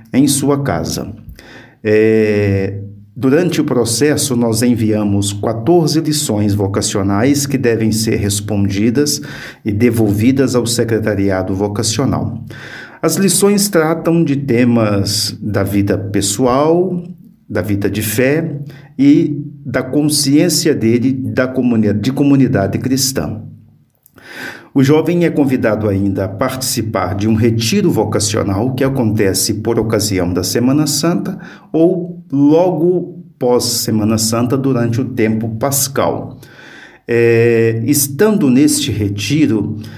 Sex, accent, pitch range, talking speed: male, Brazilian, 110-140 Hz, 100 wpm